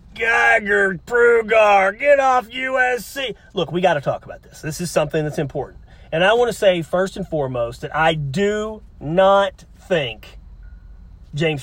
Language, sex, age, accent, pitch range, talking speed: English, male, 40-59, American, 155-210 Hz, 160 wpm